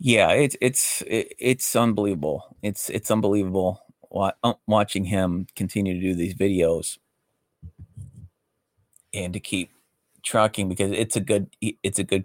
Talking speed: 125 wpm